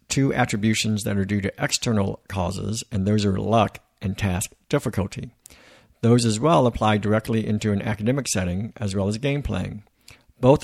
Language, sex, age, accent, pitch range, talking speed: English, male, 60-79, American, 100-125 Hz, 170 wpm